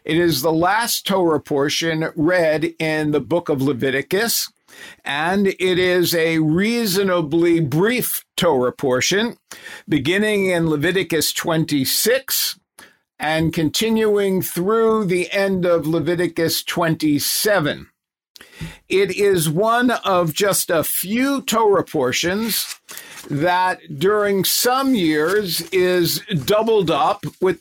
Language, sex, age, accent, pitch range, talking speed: English, male, 50-69, American, 160-200 Hz, 105 wpm